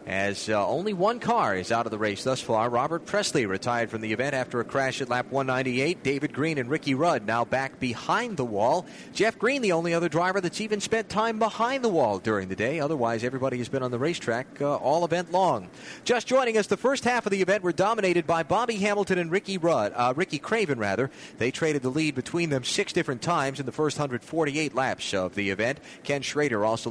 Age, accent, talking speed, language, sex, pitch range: 30-49, American, 225 wpm, English, male, 125-180 Hz